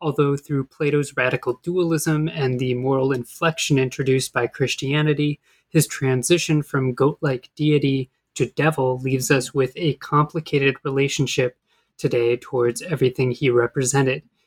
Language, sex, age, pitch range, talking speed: English, male, 20-39, 130-155 Hz, 125 wpm